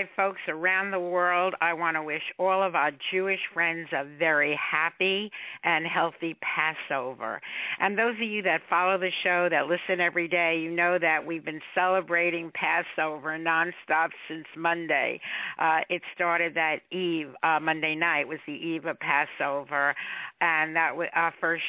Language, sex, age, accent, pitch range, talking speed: English, female, 50-69, American, 160-180 Hz, 160 wpm